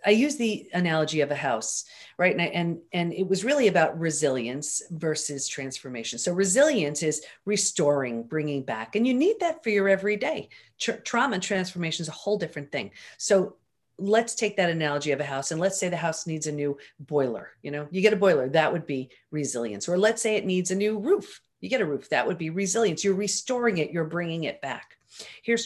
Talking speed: 215 wpm